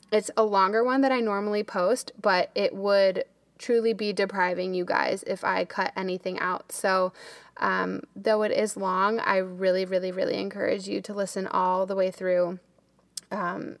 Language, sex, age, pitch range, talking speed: English, female, 20-39, 185-220 Hz, 175 wpm